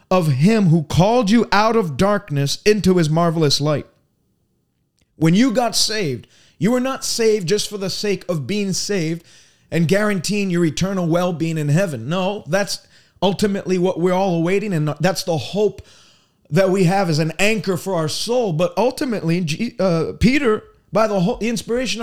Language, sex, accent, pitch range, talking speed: English, male, American, 175-235 Hz, 170 wpm